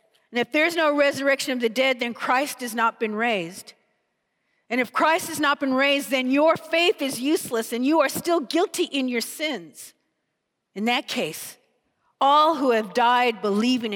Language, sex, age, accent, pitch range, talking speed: English, female, 50-69, American, 240-310 Hz, 180 wpm